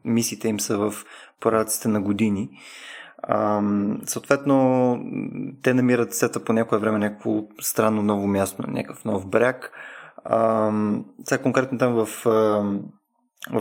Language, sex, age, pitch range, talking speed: Bulgarian, male, 20-39, 105-140 Hz, 110 wpm